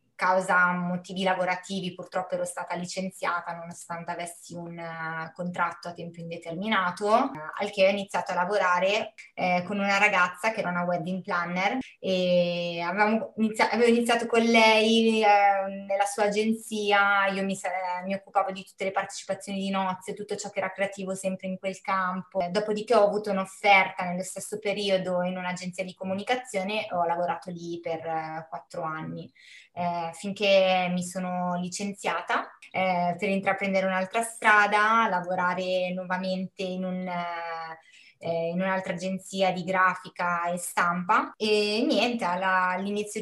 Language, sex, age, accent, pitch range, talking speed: Italian, female, 20-39, native, 175-200 Hz, 140 wpm